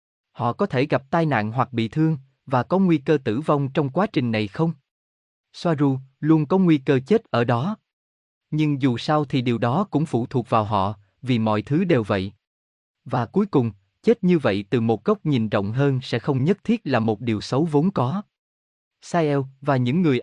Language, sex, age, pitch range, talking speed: Vietnamese, male, 20-39, 110-155 Hz, 210 wpm